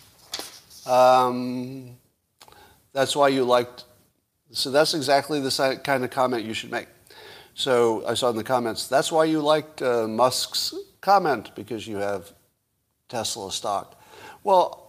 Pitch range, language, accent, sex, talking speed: 110-145 Hz, English, American, male, 135 wpm